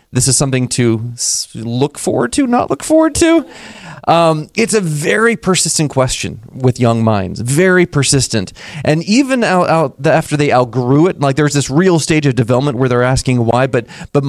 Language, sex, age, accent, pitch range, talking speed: English, male, 30-49, American, 130-200 Hz, 170 wpm